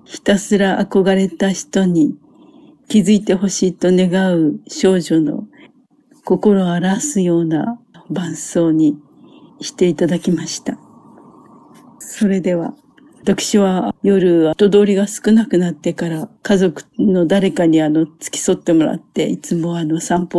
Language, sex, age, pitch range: Japanese, female, 50-69, 175-210 Hz